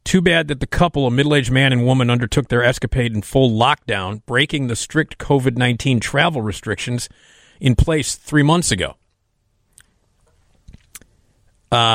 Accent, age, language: American, 40-59, English